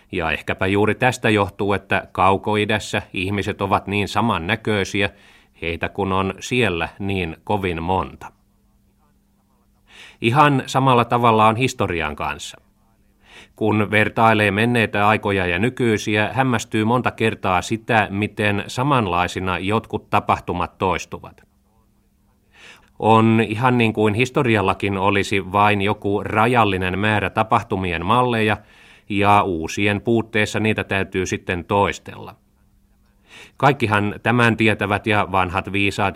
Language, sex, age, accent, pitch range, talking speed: Finnish, male, 30-49, native, 95-110 Hz, 105 wpm